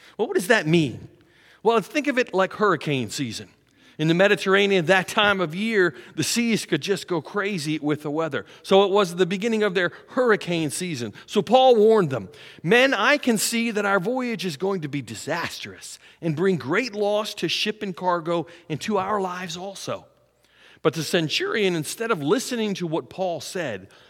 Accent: American